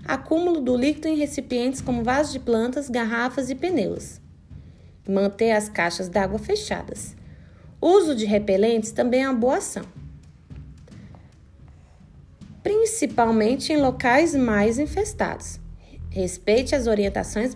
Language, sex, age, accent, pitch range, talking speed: Portuguese, female, 20-39, Brazilian, 200-275 Hz, 115 wpm